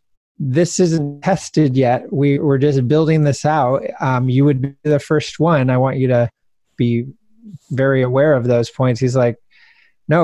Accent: American